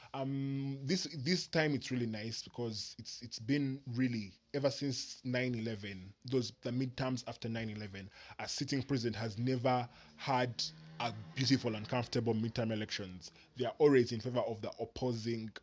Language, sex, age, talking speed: English, male, 20-39, 155 wpm